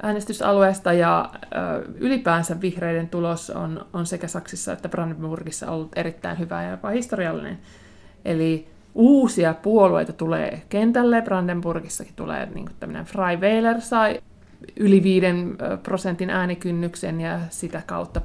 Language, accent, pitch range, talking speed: Finnish, native, 165-210 Hz, 120 wpm